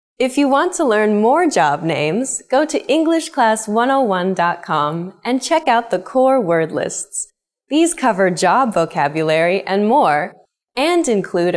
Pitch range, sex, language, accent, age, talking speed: 175-255 Hz, female, English, American, 10-29, 135 wpm